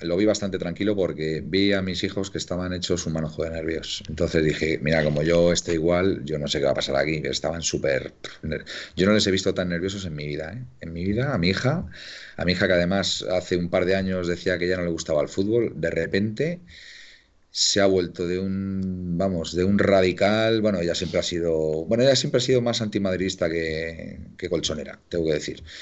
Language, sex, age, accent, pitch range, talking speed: Spanish, male, 40-59, Spanish, 80-95 Hz, 230 wpm